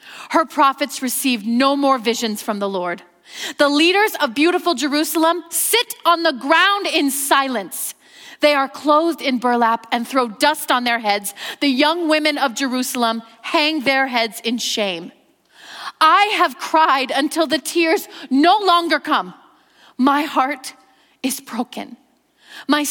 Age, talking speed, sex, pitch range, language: 30-49, 145 wpm, female, 260-335 Hz, English